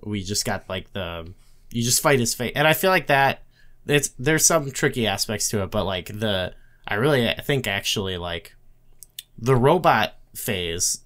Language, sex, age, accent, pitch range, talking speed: English, male, 20-39, American, 100-125 Hz, 180 wpm